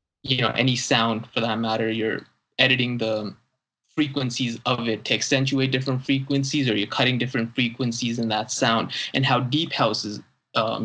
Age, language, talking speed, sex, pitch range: 20-39, English, 170 wpm, male, 115-135 Hz